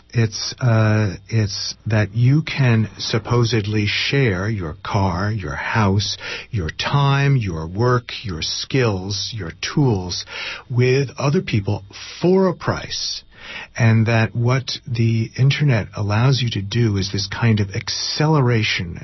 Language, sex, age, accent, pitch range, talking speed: English, male, 50-69, American, 100-130 Hz, 125 wpm